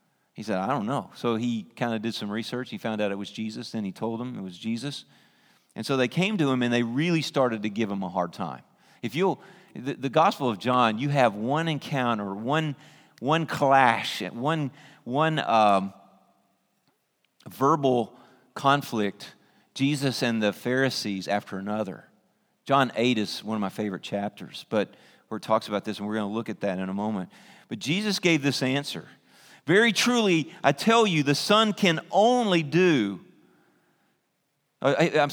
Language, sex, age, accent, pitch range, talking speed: English, male, 40-59, American, 115-170 Hz, 180 wpm